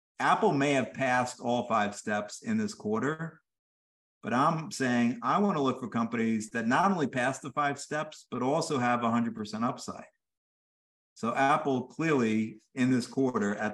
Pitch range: 105-145 Hz